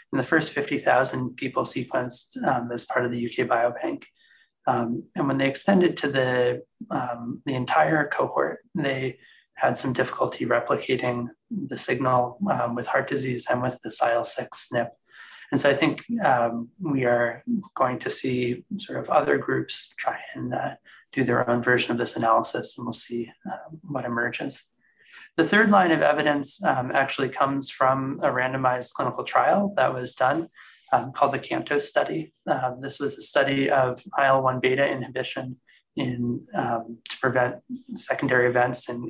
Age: 30-49